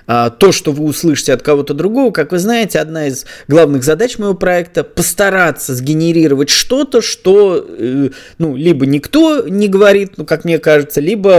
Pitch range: 135-195 Hz